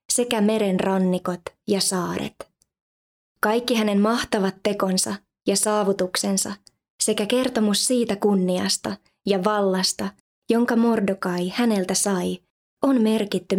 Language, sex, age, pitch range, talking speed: Finnish, female, 20-39, 185-220 Hz, 100 wpm